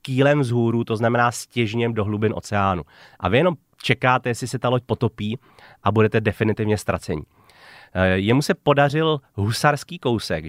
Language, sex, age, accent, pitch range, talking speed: Czech, male, 30-49, native, 105-125 Hz, 155 wpm